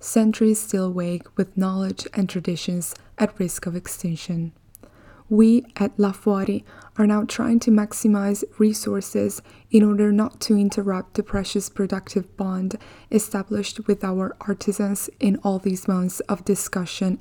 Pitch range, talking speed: 190-210 Hz, 140 wpm